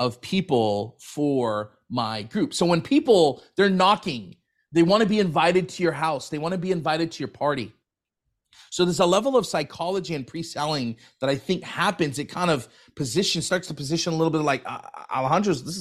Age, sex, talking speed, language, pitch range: 30-49, male, 190 wpm, English, 140-185 Hz